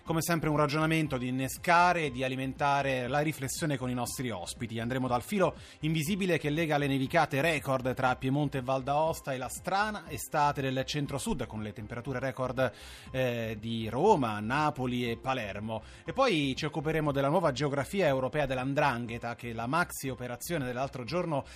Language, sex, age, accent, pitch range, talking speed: Italian, male, 30-49, native, 120-155 Hz, 165 wpm